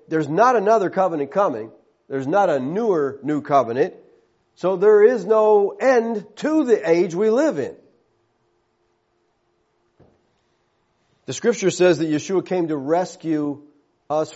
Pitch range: 145-195 Hz